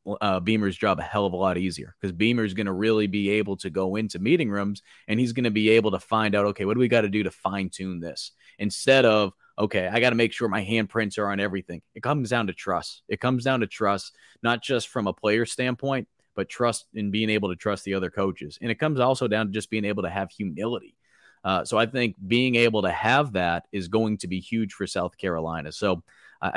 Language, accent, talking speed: English, American, 255 wpm